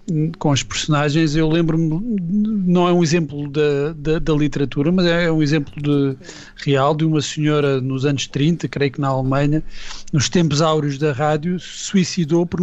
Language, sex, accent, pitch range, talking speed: Portuguese, male, Portuguese, 145-185 Hz, 175 wpm